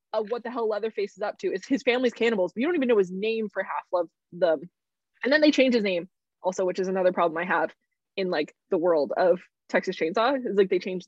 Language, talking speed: English, 255 wpm